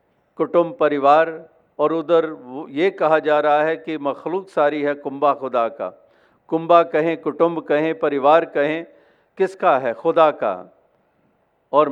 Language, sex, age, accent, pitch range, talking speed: Hindi, male, 50-69, native, 150-175 Hz, 140 wpm